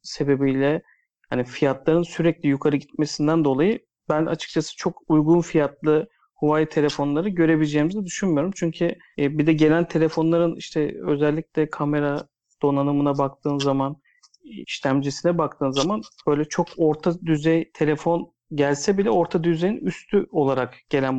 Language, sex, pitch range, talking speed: Turkish, male, 145-170 Hz, 120 wpm